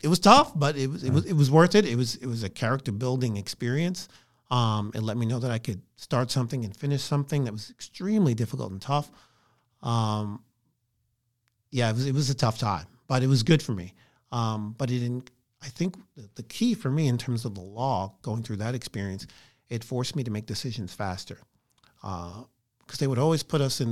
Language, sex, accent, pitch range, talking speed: English, male, American, 110-135 Hz, 220 wpm